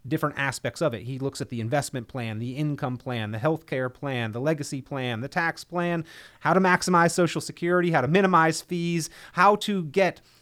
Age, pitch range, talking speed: 30-49, 130-170 Hz, 195 wpm